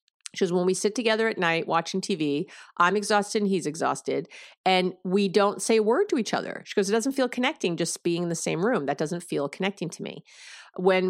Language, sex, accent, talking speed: English, female, American, 230 wpm